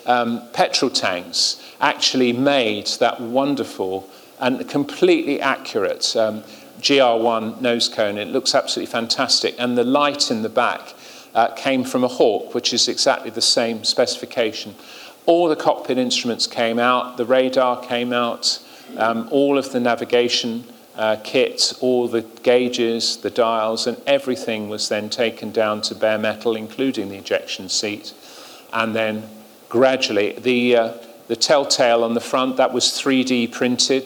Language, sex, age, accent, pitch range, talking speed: English, male, 40-59, British, 110-125 Hz, 150 wpm